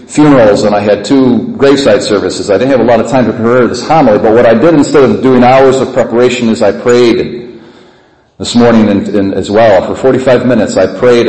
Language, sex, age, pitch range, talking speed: English, male, 40-59, 130-165 Hz, 225 wpm